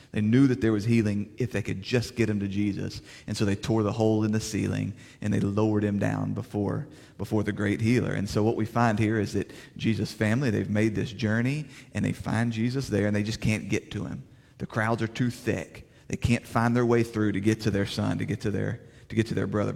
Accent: American